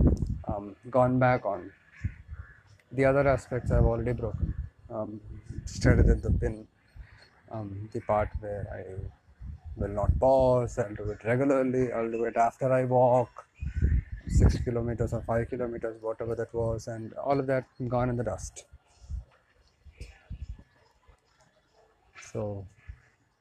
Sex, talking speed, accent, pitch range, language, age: male, 130 wpm, Indian, 105-130 Hz, English, 30-49